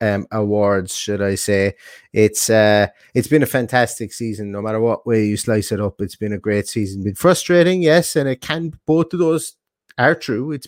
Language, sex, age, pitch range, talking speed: English, male, 30-49, 105-140 Hz, 210 wpm